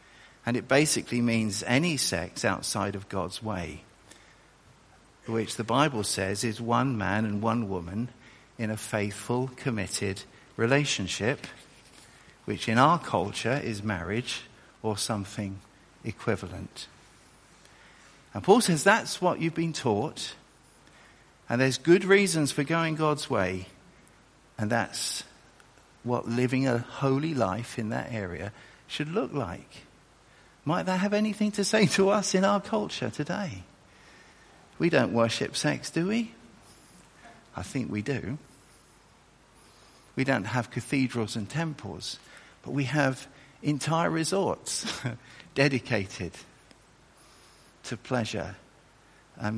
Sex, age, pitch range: male, 50-69, 105-140 Hz